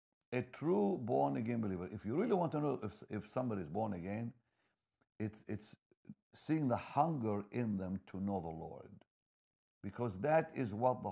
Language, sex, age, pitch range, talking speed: English, male, 60-79, 95-130 Hz, 175 wpm